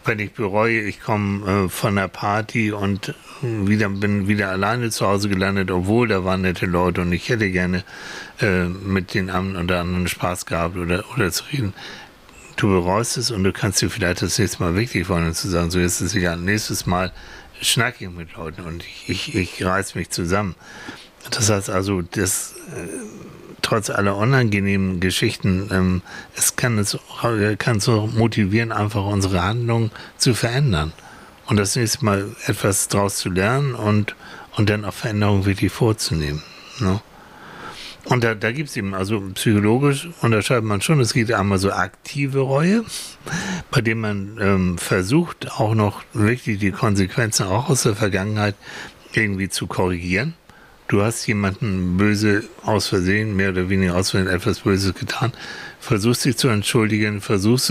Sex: male